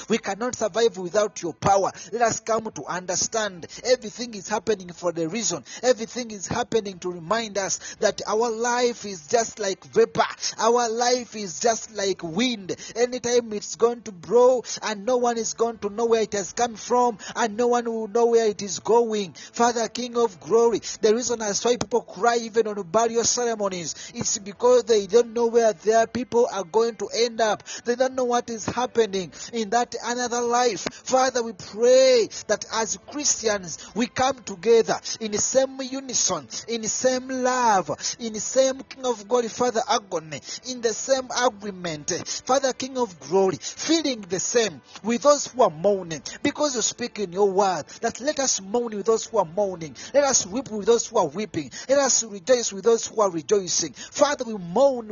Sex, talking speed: male, 190 wpm